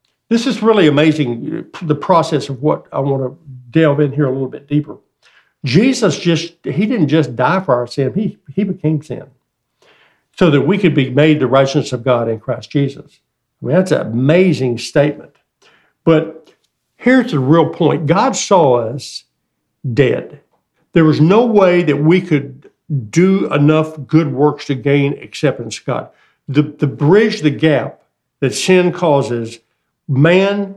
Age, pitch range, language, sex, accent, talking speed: 60-79, 135-170 Hz, English, male, American, 165 wpm